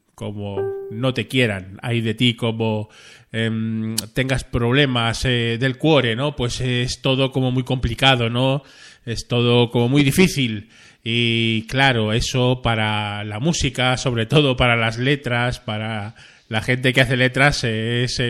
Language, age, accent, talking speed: Spanish, 20-39, Spanish, 150 wpm